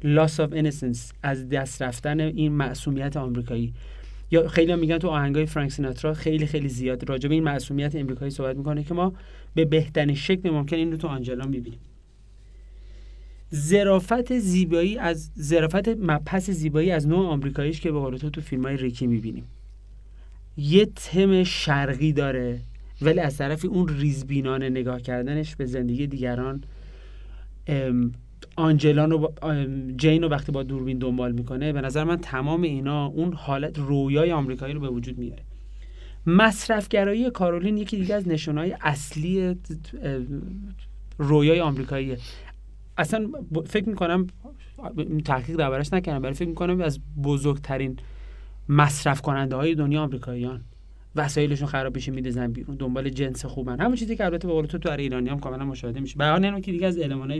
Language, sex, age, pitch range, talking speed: Persian, male, 30-49, 130-165 Hz, 145 wpm